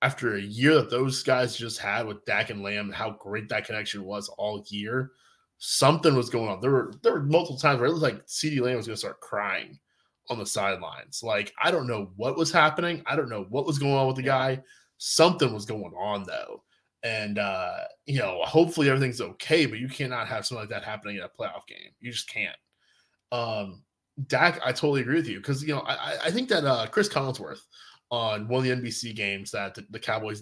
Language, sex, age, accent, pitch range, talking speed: English, male, 20-39, American, 110-145 Hz, 225 wpm